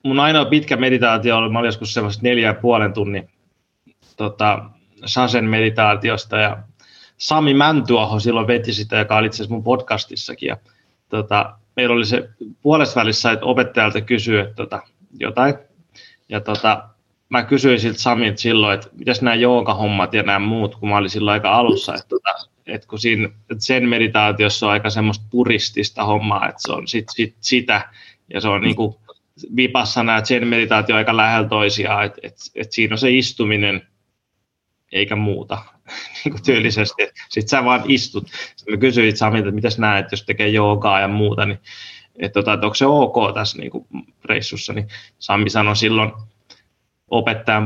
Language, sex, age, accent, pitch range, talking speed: Finnish, male, 20-39, native, 105-120 Hz, 165 wpm